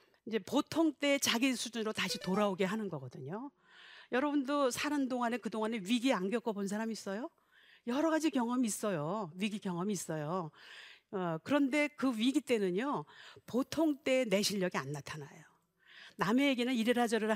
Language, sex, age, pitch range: Korean, female, 50-69, 190-275 Hz